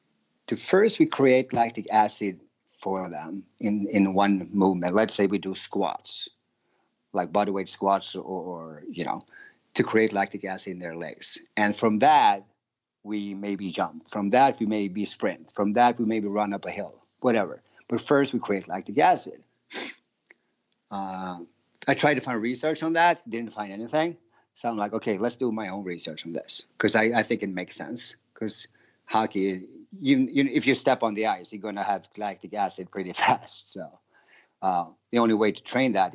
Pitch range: 100-120 Hz